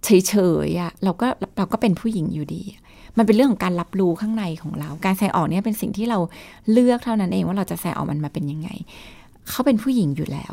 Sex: female